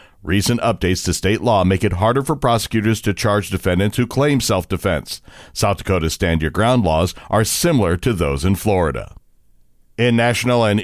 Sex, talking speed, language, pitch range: male, 160 wpm, English, 100-120 Hz